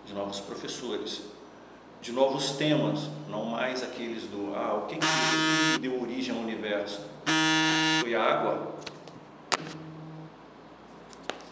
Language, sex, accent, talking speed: Portuguese, male, Brazilian, 115 wpm